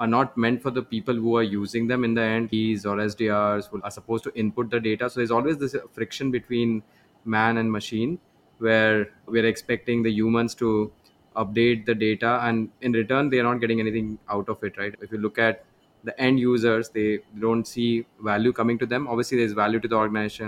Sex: male